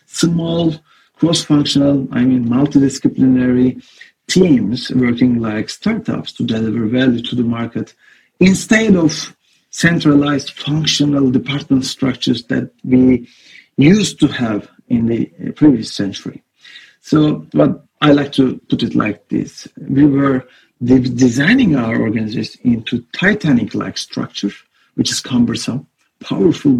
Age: 50-69